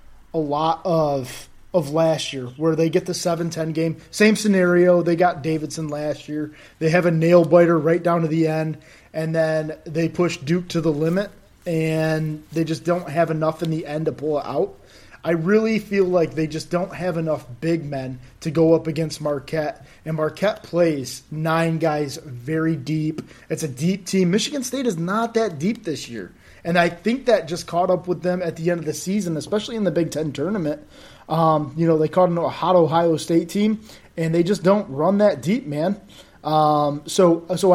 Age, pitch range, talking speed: 20-39, 155-175 Hz, 200 wpm